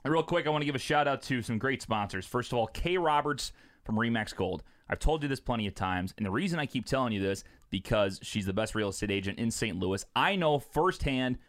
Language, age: English, 30-49